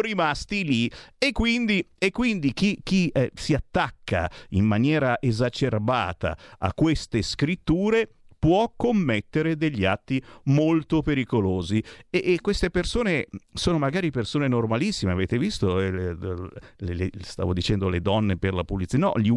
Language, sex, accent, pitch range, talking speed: Italian, male, native, 105-175 Hz, 140 wpm